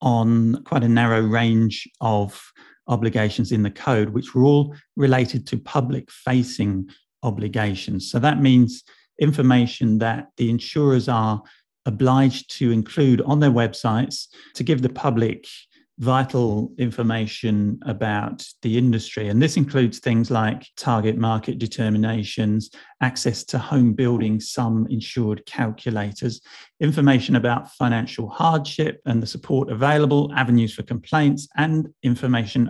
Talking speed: 125 wpm